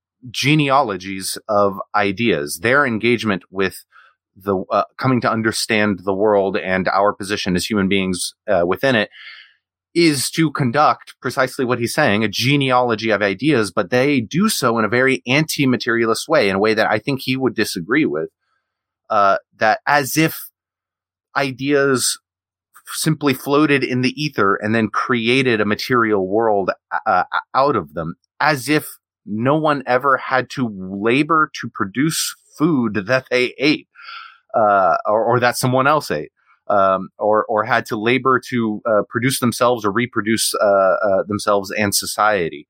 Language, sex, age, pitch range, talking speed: English, male, 30-49, 105-130 Hz, 155 wpm